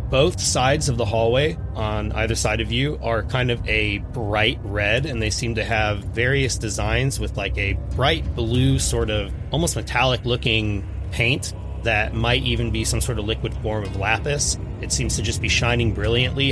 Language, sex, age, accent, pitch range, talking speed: English, male, 30-49, American, 100-115 Hz, 190 wpm